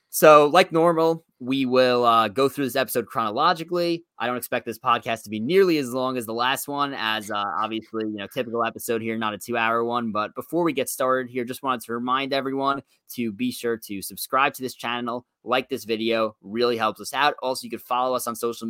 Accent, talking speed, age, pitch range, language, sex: American, 225 wpm, 20-39, 115-140 Hz, English, male